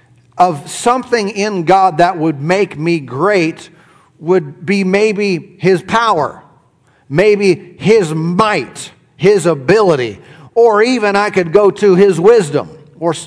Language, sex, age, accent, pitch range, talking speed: English, male, 50-69, American, 160-225 Hz, 125 wpm